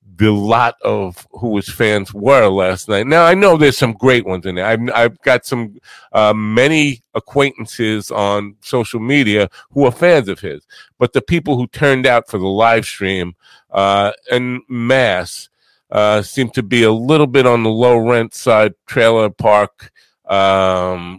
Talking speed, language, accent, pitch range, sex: 175 wpm, English, American, 95-125 Hz, male